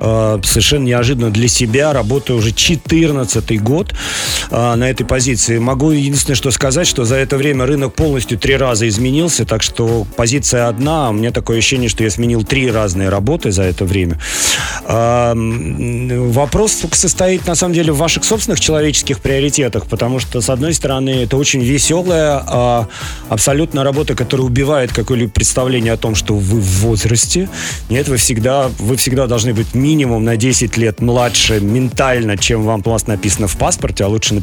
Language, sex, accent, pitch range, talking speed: Russian, male, native, 110-140 Hz, 160 wpm